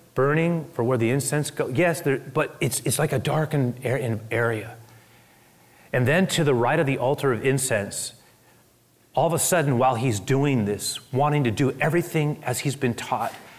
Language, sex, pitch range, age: English, male, 135-190 Hz, 30-49